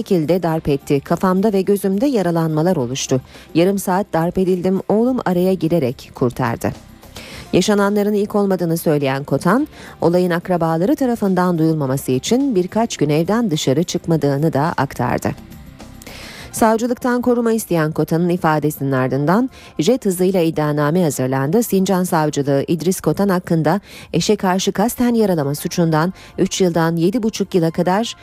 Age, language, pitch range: 40-59, Turkish, 155-210 Hz